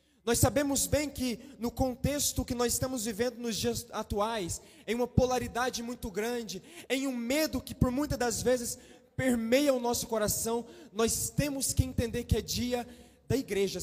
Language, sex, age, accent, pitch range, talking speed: Portuguese, male, 20-39, Brazilian, 230-285 Hz, 170 wpm